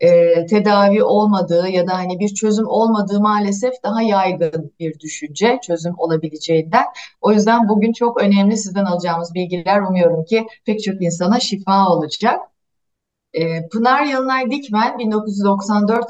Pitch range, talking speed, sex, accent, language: 175-230 Hz, 135 wpm, female, native, Turkish